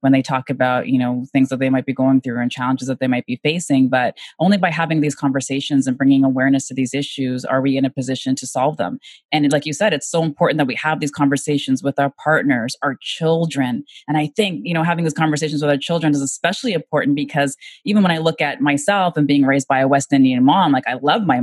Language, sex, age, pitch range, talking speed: English, female, 20-39, 135-155 Hz, 250 wpm